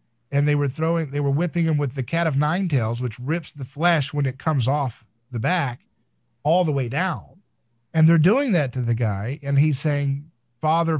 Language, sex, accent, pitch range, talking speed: English, male, American, 125-165 Hz, 215 wpm